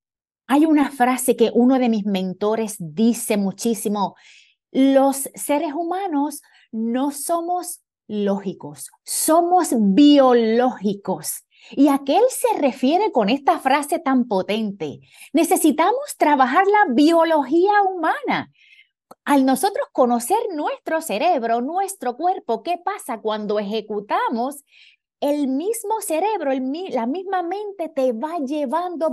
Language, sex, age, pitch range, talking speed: Spanish, female, 30-49, 240-360 Hz, 110 wpm